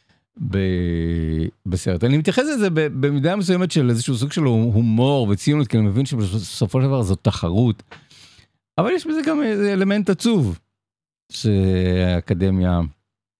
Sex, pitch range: male, 110-165 Hz